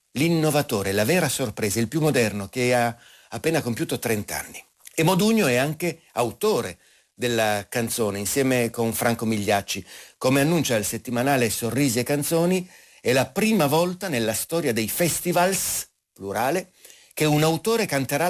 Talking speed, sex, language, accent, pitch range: 145 wpm, male, Italian, native, 110-150 Hz